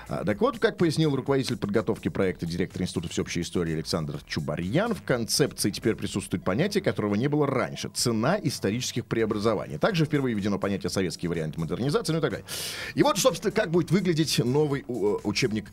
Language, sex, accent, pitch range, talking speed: Russian, male, native, 115-180 Hz, 170 wpm